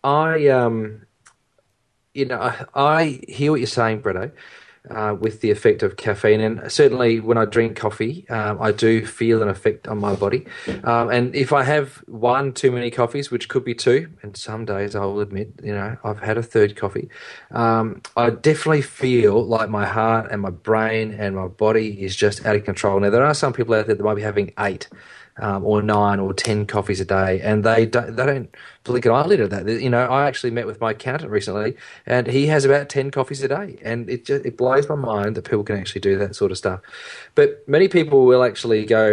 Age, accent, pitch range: 30-49, Australian, 105-130 Hz